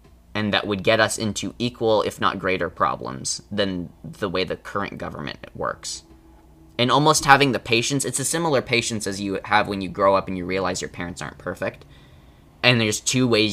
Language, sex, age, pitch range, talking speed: English, male, 20-39, 80-105 Hz, 195 wpm